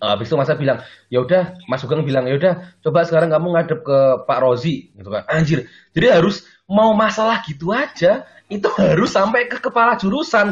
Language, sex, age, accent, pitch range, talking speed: Indonesian, male, 20-39, native, 130-175 Hz, 190 wpm